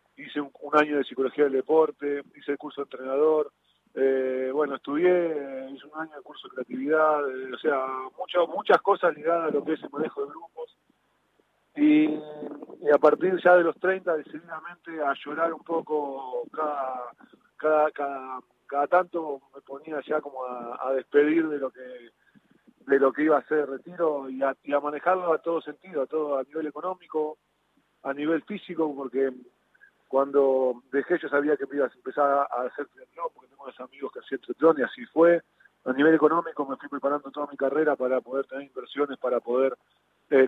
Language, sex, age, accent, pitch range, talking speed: Spanish, male, 40-59, Argentinian, 135-160 Hz, 190 wpm